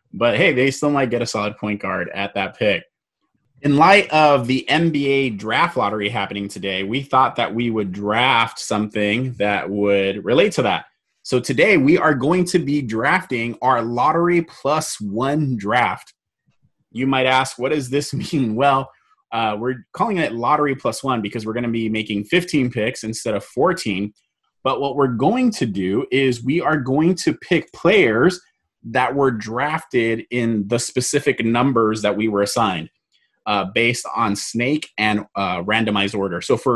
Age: 20-39